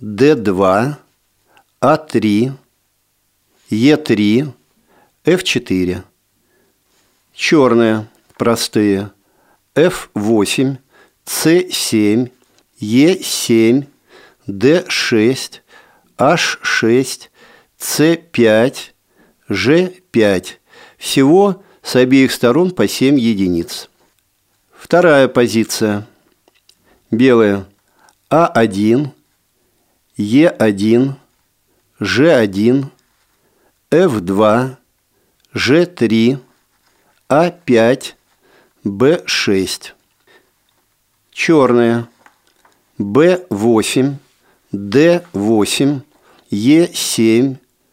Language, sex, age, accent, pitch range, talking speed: Russian, male, 50-69, native, 105-140 Hz, 45 wpm